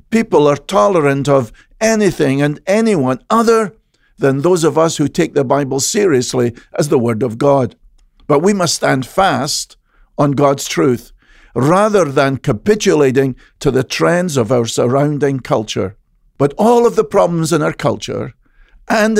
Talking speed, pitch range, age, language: 155 wpm, 135-180 Hz, 50-69, English